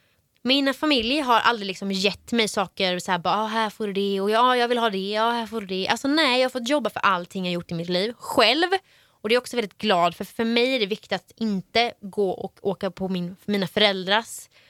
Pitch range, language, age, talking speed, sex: 200-295 Hz, Swedish, 20-39, 255 wpm, female